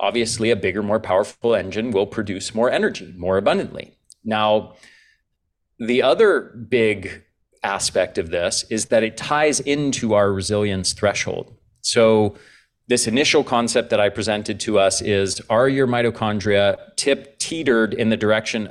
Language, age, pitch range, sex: English, 30-49, 100-120 Hz, male